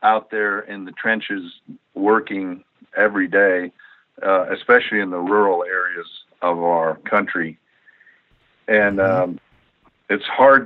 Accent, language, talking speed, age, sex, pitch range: American, English, 120 wpm, 50-69, male, 90-110 Hz